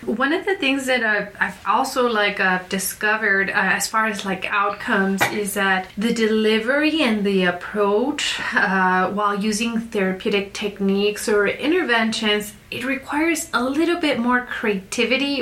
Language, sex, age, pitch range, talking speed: English, female, 30-49, 190-225 Hz, 150 wpm